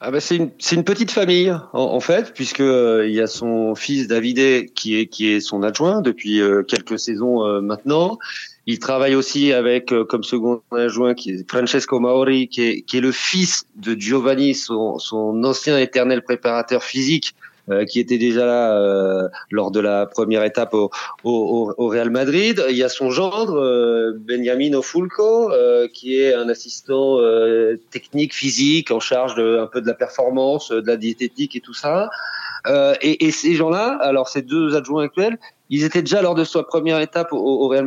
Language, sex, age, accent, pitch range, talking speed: French, male, 30-49, French, 110-155 Hz, 195 wpm